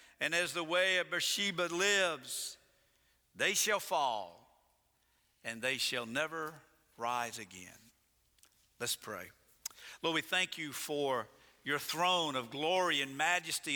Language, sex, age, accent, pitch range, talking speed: English, male, 50-69, American, 115-160 Hz, 125 wpm